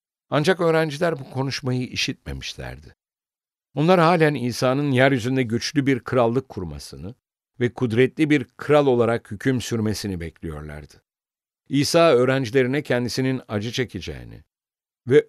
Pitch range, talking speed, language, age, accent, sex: 105-140 Hz, 105 wpm, English, 60-79, Turkish, male